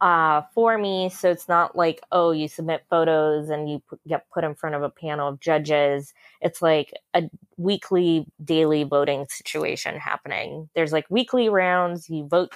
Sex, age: female, 20-39